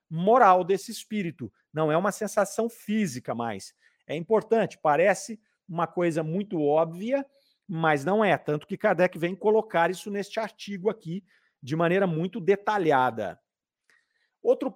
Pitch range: 170-220 Hz